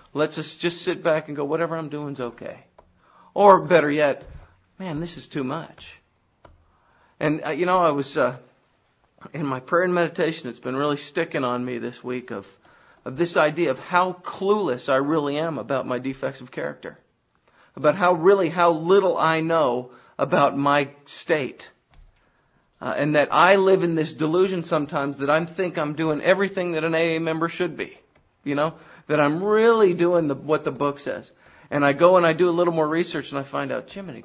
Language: English